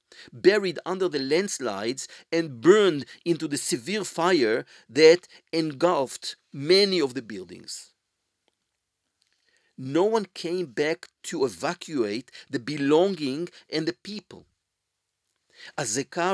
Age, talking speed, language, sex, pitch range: 50-69, 105 wpm, Hebrew, male, 155-195 Hz